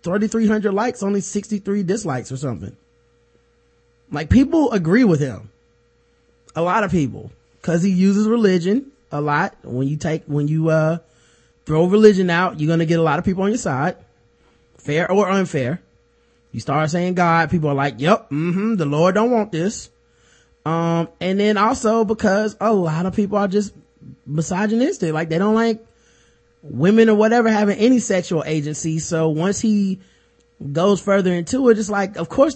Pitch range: 145-205 Hz